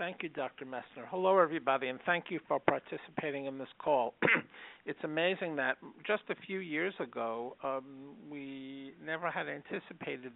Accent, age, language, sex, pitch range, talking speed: American, 50-69, English, male, 125-150 Hz, 155 wpm